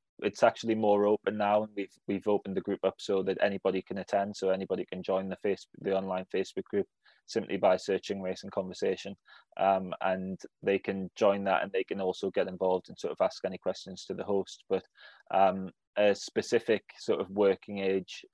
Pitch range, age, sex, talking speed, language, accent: 95-100 Hz, 20-39, male, 205 wpm, English, British